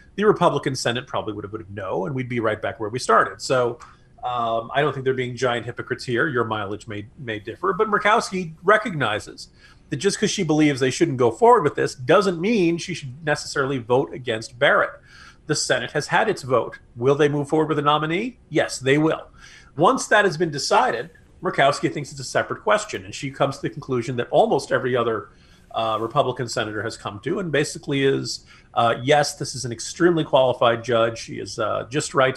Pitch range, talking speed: 125-170 Hz, 210 wpm